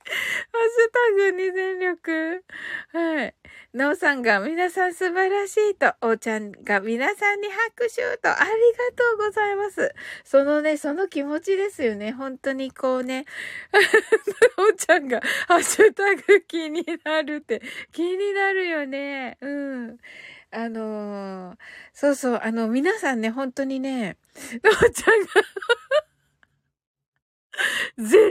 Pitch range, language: 230-375 Hz, Japanese